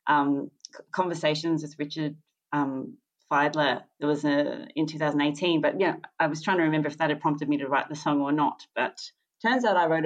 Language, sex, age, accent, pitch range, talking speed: English, female, 30-49, Australian, 140-165 Hz, 205 wpm